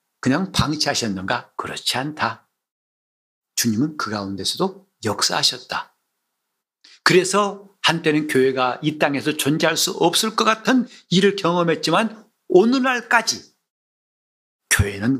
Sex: male